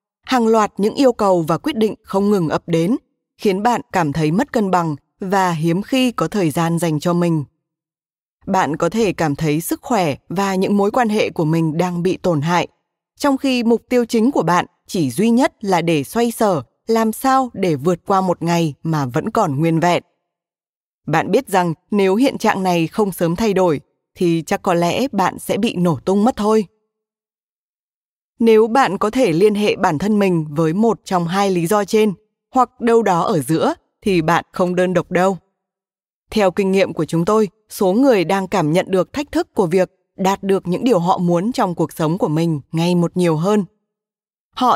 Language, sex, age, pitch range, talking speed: Vietnamese, female, 20-39, 175-225 Hz, 205 wpm